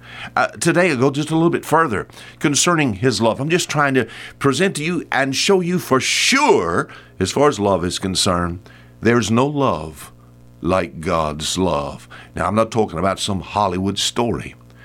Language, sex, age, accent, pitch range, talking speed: English, male, 60-79, American, 75-130 Hz, 180 wpm